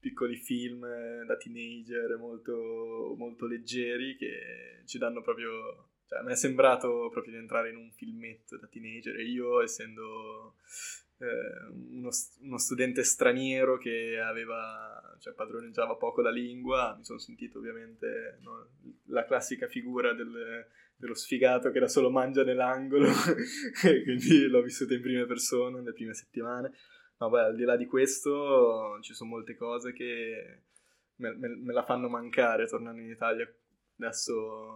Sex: male